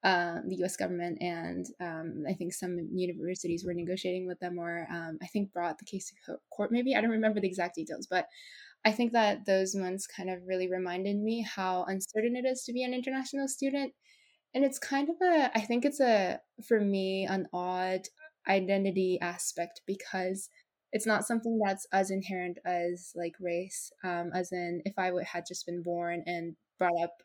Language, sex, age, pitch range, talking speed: English, female, 20-39, 175-215 Hz, 190 wpm